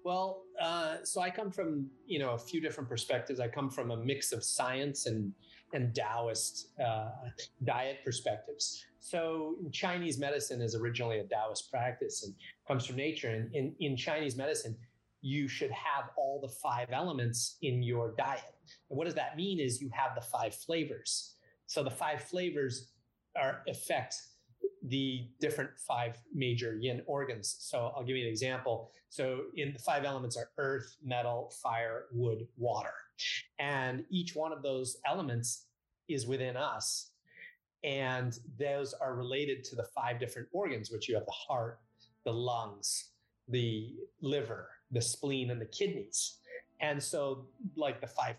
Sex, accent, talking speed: male, American, 160 wpm